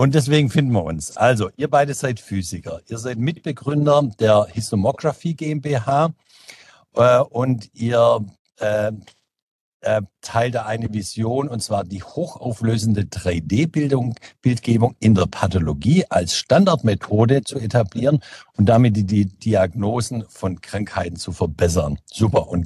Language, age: German, 60-79